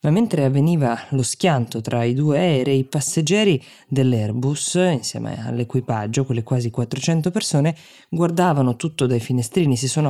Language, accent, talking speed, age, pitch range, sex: Italian, native, 145 wpm, 20-39, 130-155 Hz, female